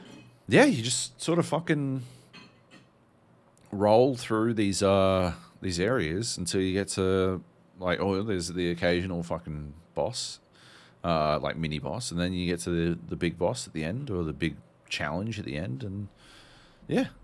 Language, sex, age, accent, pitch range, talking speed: English, male, 30-49, Australian, 85-125 Hz, 165 wpm